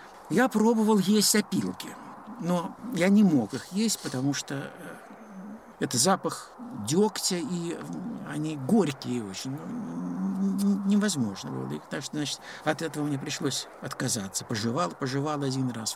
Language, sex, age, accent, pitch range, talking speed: Russian, male, 60-79, native, 140-195 Hz, 130 wpm